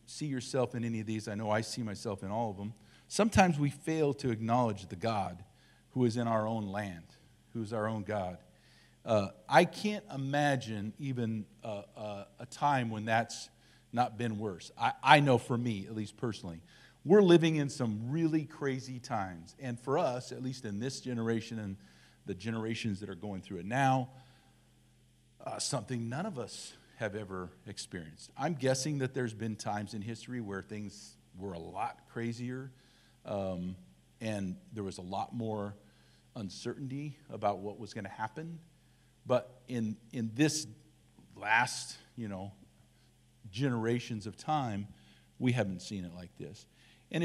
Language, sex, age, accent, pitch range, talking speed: English, male, 50-69, American, 105-130 Hz, 170 wpm